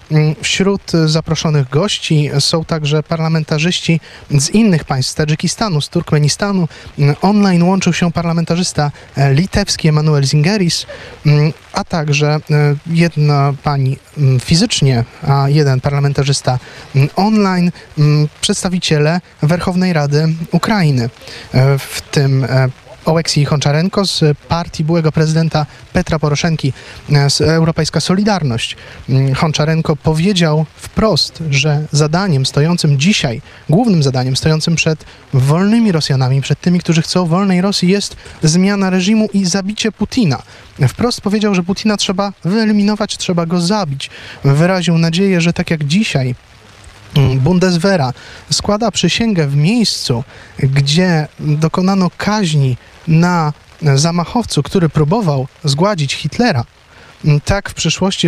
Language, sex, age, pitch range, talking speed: Polish, male, 20-39, 145-180 Hz, 105 wpm